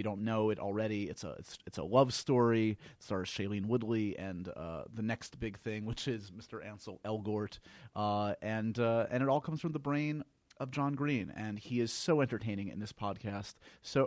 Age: 30-49